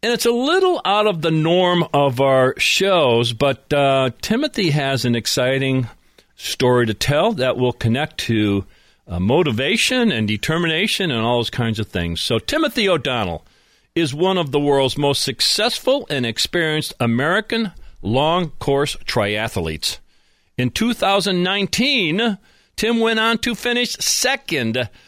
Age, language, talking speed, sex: 50-69, English, 140 wpm, male